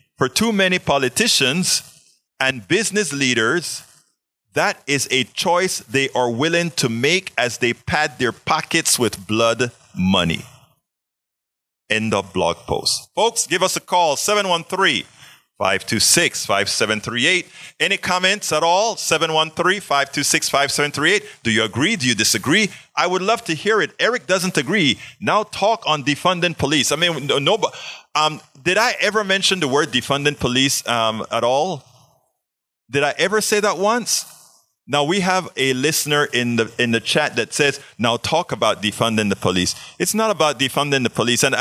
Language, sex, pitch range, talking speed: English, male, 120-175 Hz, 155 wpm